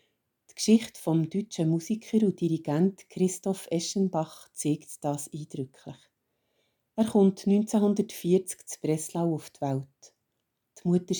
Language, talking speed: German, 120 wpm